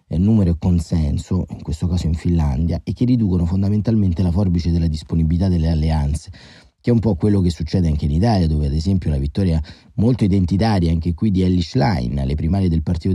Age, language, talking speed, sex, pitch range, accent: 30-49, Italian, 200 wpm, male, 85-100 Hz, native